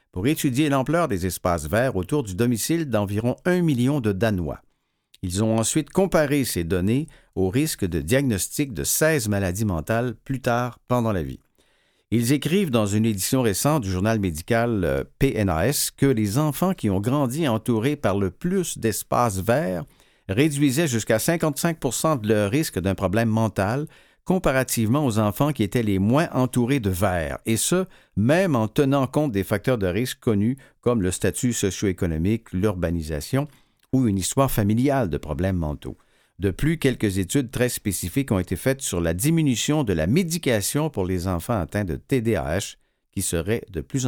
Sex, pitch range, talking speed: male, 95-140 Hz, 165 wpm